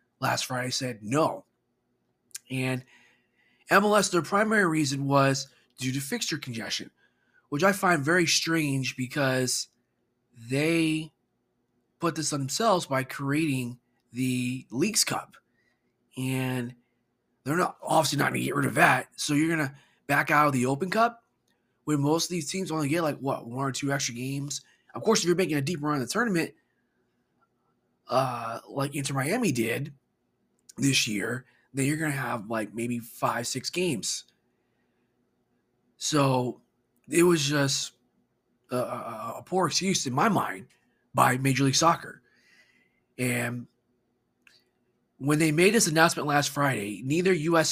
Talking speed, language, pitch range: 150 wpm, English, 125-165 Hz